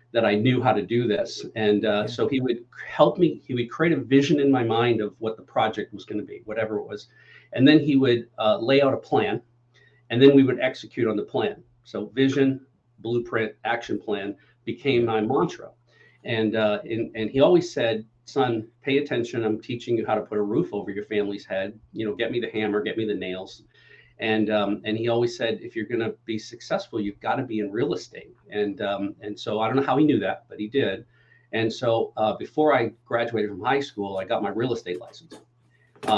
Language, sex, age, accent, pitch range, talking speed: English, male, 50-69, American, 105-125 Hz, 230 wpm